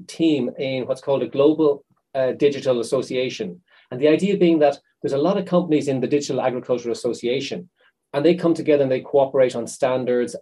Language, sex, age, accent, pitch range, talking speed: English, male, 30-49, Irish, 130-170 Hz, 190 wpm